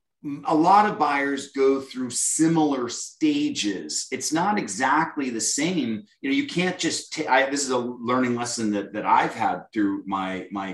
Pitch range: 105-150 Hz